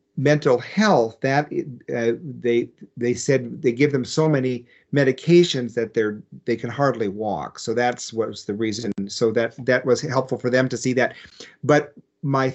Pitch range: 115-145 Hz